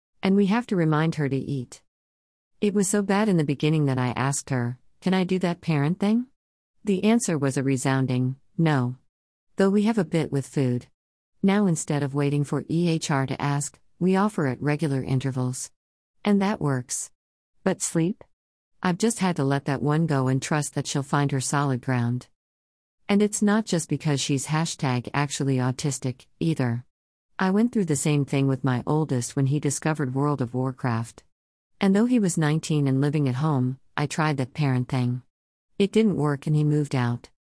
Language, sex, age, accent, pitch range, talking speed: English, female, 50-69, American, 130-175 Hz, 190 wpm